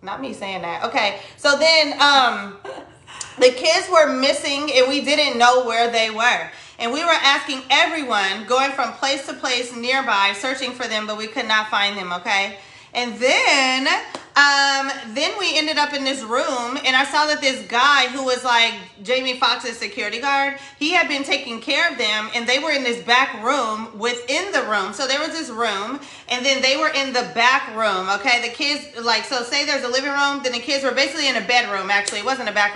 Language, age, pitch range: English, 30-49, 235-290 Hz